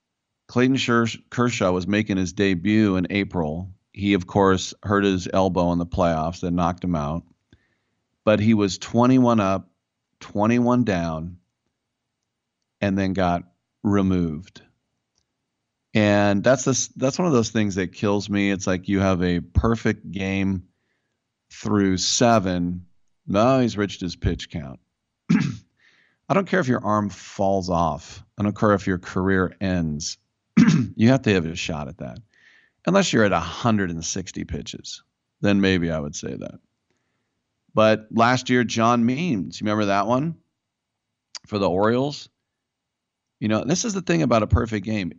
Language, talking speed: English, 150 wpm